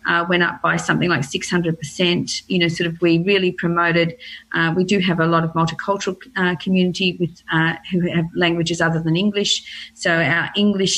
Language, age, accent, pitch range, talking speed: English, 40-59, Australian, 170-200 Hz, 190 wpm